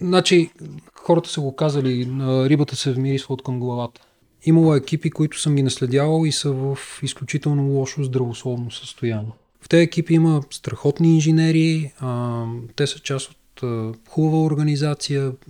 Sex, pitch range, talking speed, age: male, 130-155 Hz, 145 wpm, 30-49